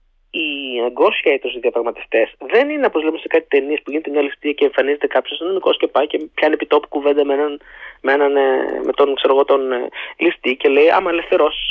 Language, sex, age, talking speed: Greek, male, 20-39, 190 wpm